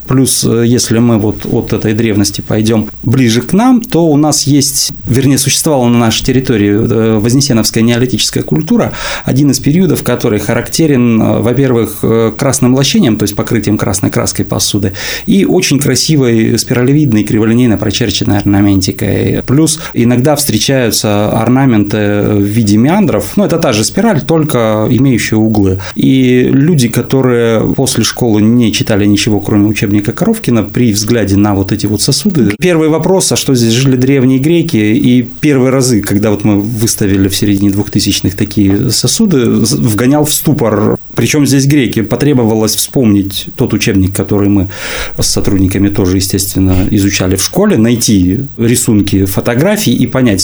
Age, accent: 30-49, native